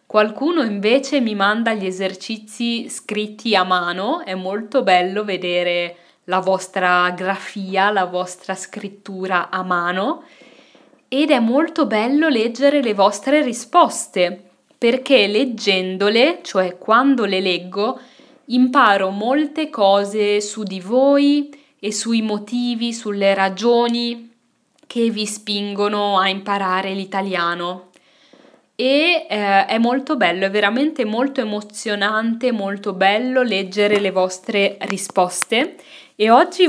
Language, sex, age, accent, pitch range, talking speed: Italian, female, 20-39, native, 195-240 Hz, 110 wpm